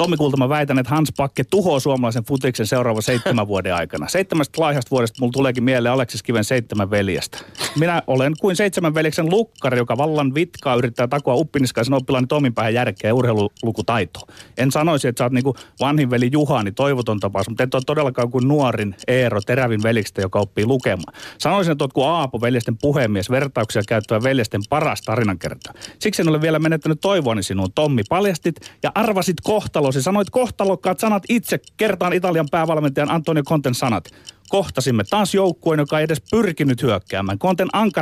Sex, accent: male, native